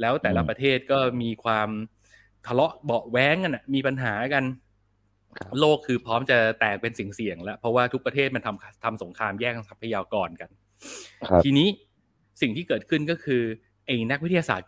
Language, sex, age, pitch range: Thai, male, 20-39, 105-130 Hz